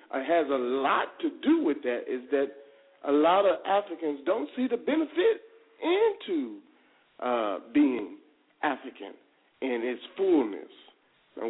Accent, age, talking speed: American, 40-59, 135 wpm